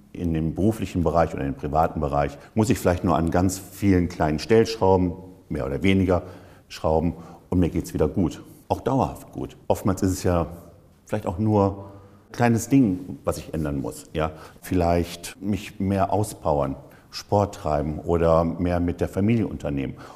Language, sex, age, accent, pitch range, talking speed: German, male, 50-69, German, 80-95 Hz, 170 wpm